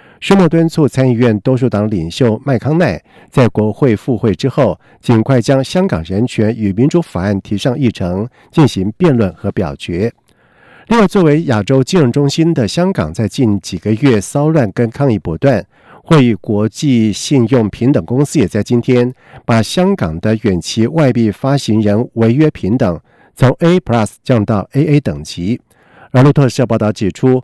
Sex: male